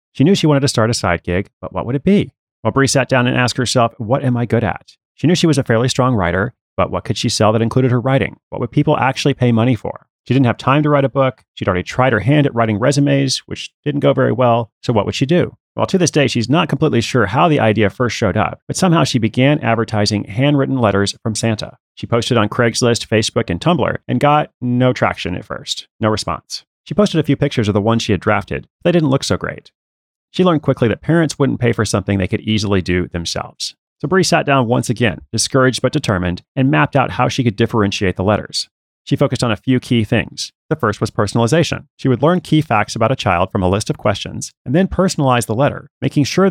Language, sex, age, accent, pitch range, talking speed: English, male, 30-49, American, 110-140 Hz, 250 wpm